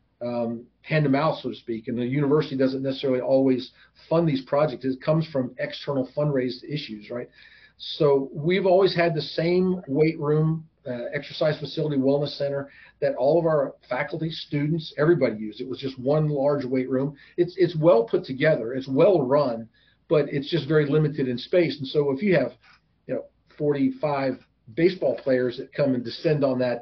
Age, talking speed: 40-59, 185 wpm